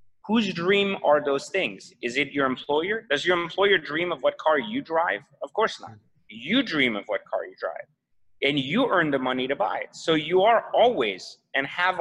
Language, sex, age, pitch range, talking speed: English, male, 30-49, 130-180 Hz, 210 wpm